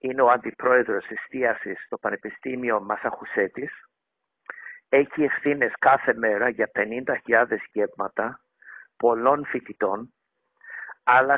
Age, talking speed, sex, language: 50-69, 90 wpm, male, Greek